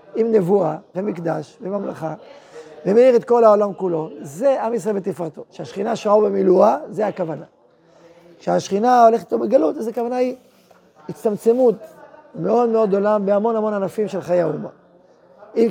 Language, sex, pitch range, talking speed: Hebrew, male, 175-220 Hz, 140 wpm